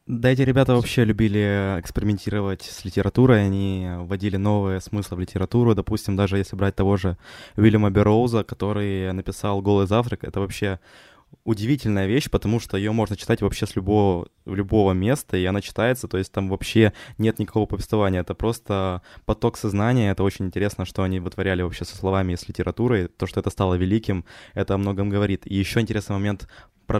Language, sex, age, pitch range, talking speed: Ukrainian, male, 20-39, 95-110 Hz, 180 wpm